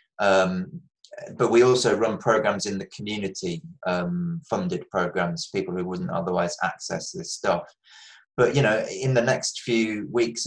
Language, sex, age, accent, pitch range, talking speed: English, male, 20-39, British, 95-120 Hz, 155 wpm